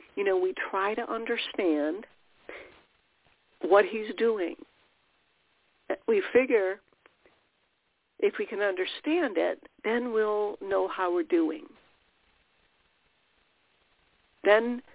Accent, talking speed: American, 90 wpm